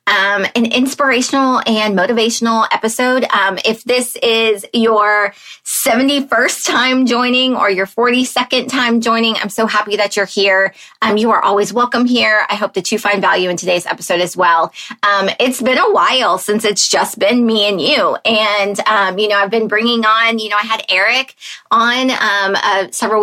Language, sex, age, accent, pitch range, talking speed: English, female, 20-39, American, 190-240 Hz, 180 wpm